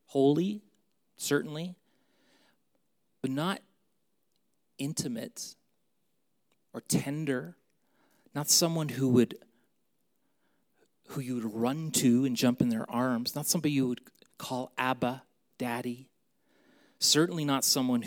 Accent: American